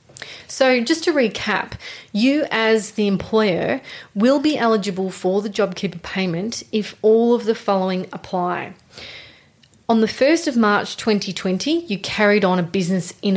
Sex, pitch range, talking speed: female, 185-225 Hz, 150 wpm